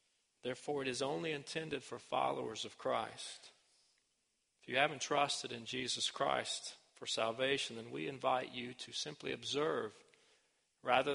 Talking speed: 140 wpm